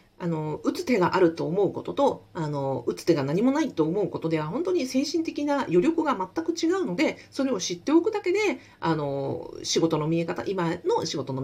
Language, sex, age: Japanese, female, 40-59